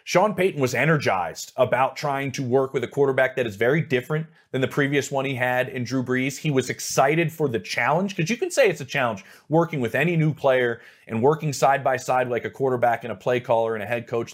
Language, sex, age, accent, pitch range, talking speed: English, male, 30-49, American, 125-155 Hz, 245 wpm